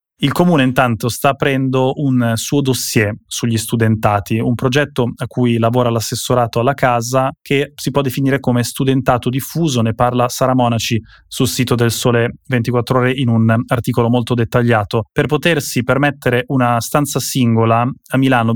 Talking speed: 155 wpm